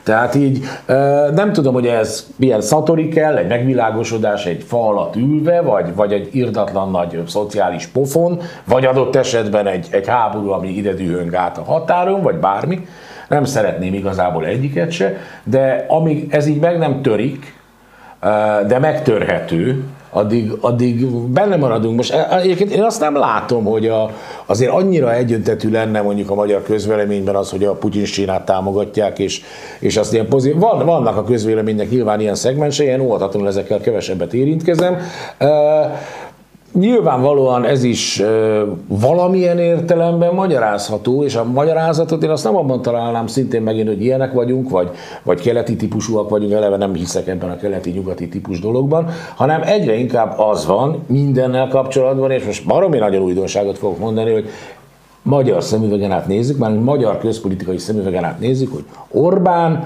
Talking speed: 150 wpm